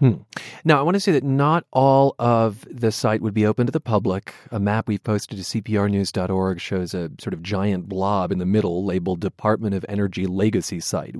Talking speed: 210 wpm